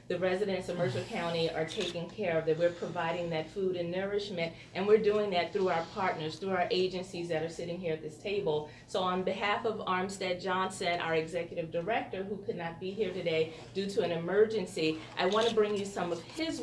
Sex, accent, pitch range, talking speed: female, American, 175-230 Hz, 215 wpm